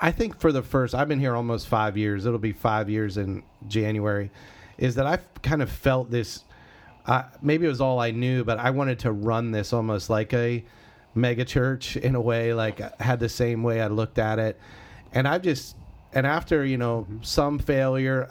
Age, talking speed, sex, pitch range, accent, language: 30-49, 215 wpm, male, 110-130 Hz, American, English